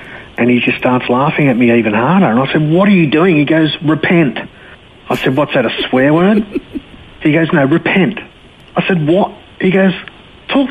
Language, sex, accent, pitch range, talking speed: English, male, Australian, 110-165 Hz, 200 wpm